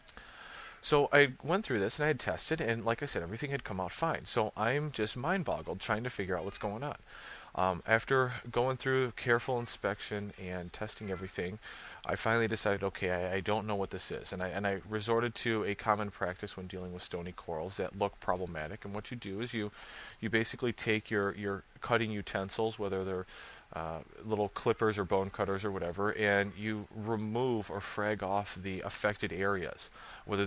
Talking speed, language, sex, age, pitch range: 195 wpm, English, male, 30-49, 95-115 Hz